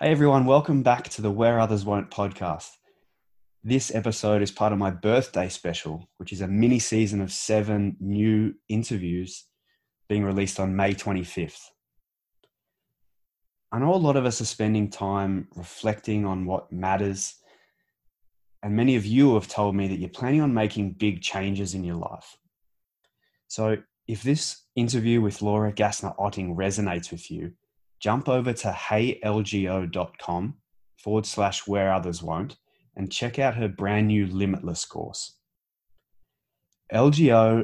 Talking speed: 145 wpm